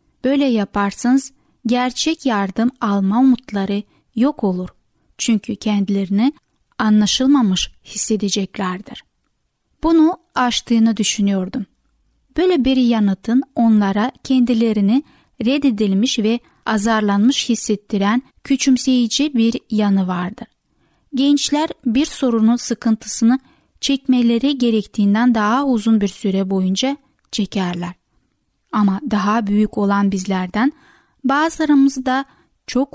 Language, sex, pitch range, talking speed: Turkish, female, 205-265 Hz, 85 wpm